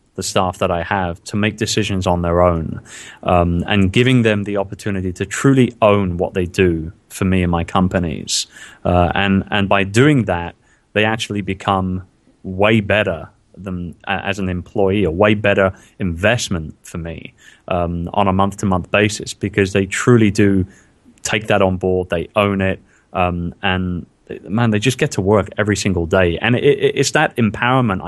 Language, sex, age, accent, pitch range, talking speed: English, male, 20-39, British, 90-110 Hz, 170 wpm